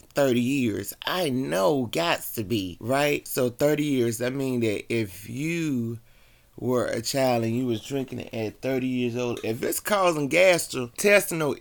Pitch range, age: 110-140 Hz, 30-49